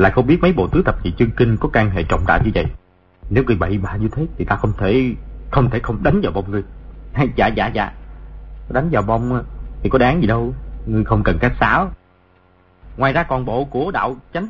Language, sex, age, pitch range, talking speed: Vietnamese, male, 30-49, 90-135 Hz, 235 wpm